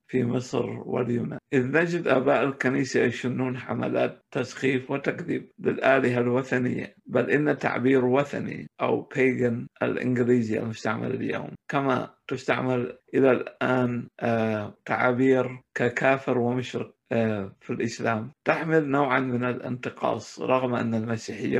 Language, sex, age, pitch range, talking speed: Arabic, male, 60-79, 120-130 Hz, 105 wpm